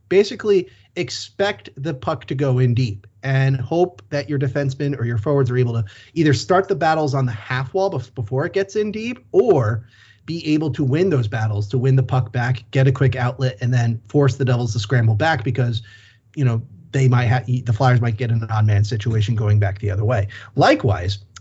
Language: English